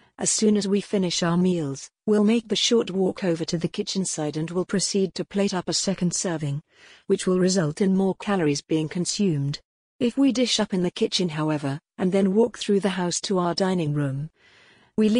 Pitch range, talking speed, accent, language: 170-205 Hz, 210 wpm, British, English